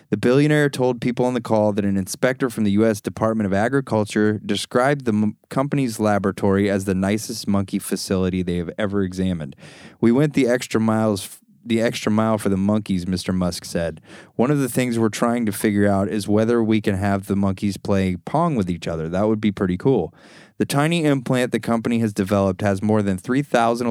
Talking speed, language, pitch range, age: 205 wpm, English, 100-120 Hz, 20-39